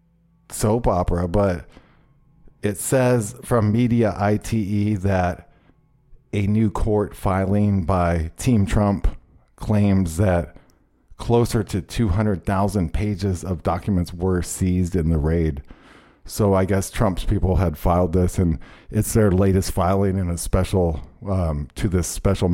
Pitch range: 85-105 Hz